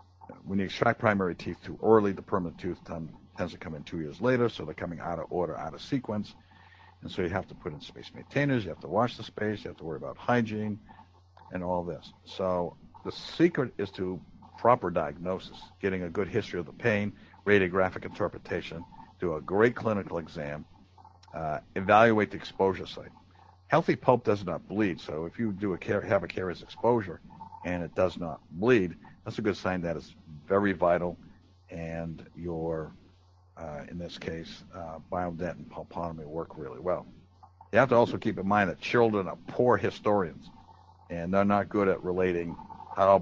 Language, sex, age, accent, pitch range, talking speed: English, male, 60-79, American, 85-100 Hz, 190 wpm